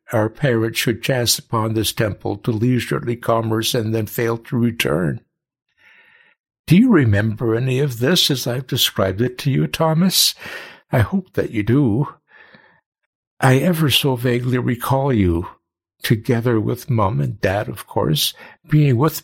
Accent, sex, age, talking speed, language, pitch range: American, male, 60-79, 150 wpm, English, 115-145 Hz